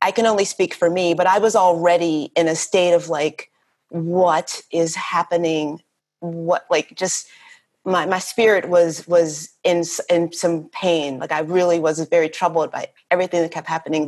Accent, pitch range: American, 170-190 Hz